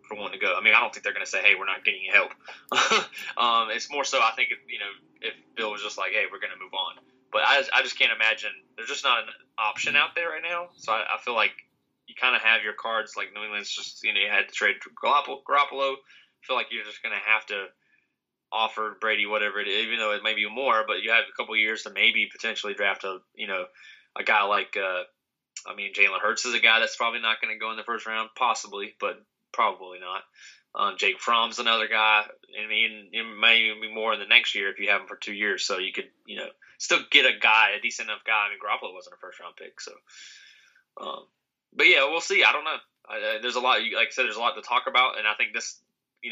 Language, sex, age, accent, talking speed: English, male, 20-39, American, 265 wpm